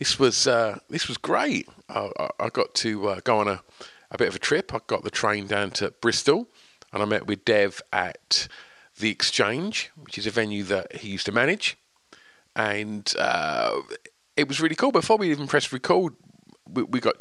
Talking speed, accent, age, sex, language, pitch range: 200 wpm, British, 40-59, male, English, 95-130 Hz